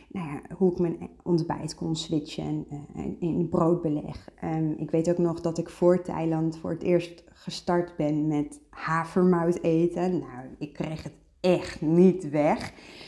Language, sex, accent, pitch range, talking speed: Dutch, female, Dutch, 160-195 Hz, 150 wpm